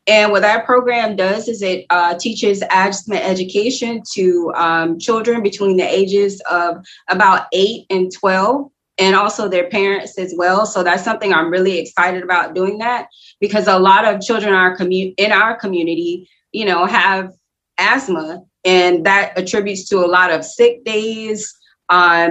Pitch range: 180-215 Hz